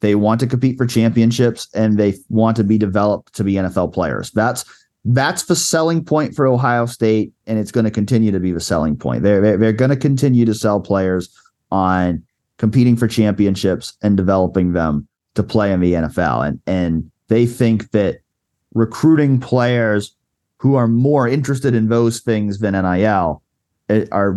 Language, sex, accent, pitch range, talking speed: English, male, American, 100-125 Hz, 175 wpm